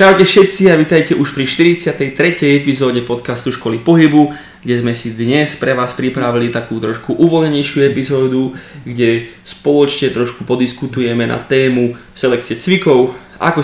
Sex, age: male, 20-39